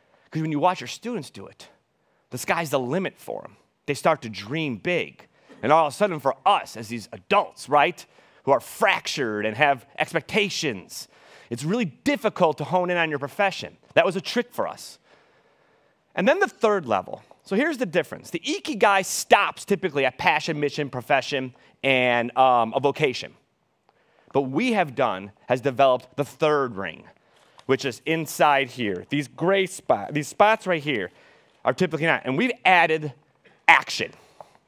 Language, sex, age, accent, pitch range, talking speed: English, male, 30-49, American, 130-190 Hz, 170 wpm